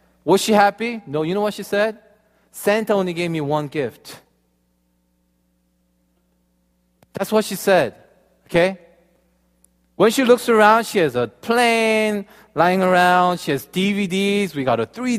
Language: Korean